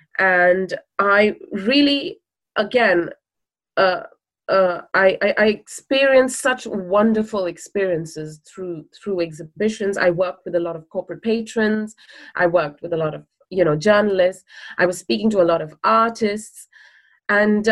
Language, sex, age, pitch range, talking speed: English, female, 30-49, 190-260 Hz, 140 wpm